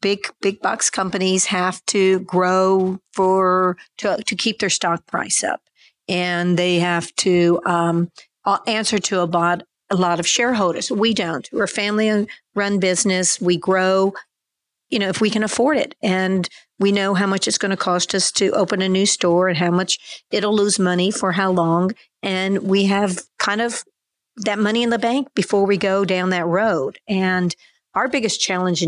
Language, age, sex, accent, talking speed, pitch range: English, 50-69, female, American, 185 wpm, 180-210 Hz